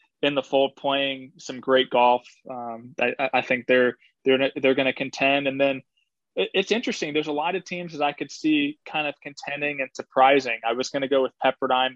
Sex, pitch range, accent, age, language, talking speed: male, 125-145 Hz, American, 20-39, English, 215 wpm